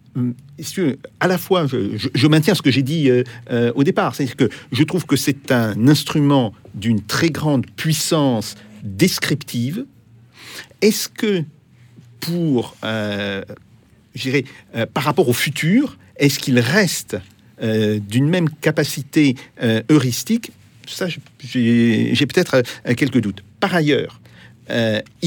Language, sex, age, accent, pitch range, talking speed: French, male, 50-69, French, 115-150 Hz, 140 wpm